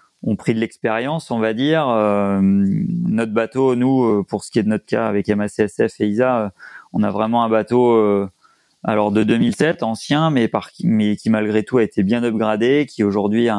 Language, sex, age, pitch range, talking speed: French, male, 30-49, 105-120 Hz, 200 wpm